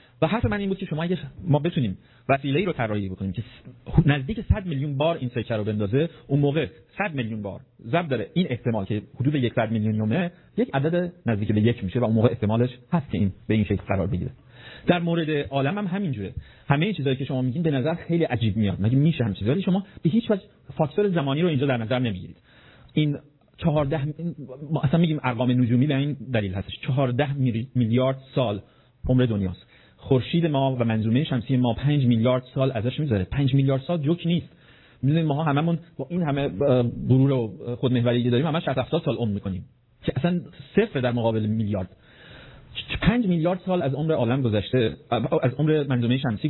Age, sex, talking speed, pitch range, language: 40-59, male, 180 wpm, 120-155 Hz, Persian